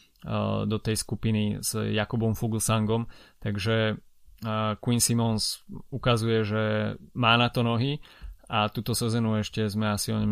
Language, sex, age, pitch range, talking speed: Slovak, male, 20-39, 110-120 Hz, 135 wpm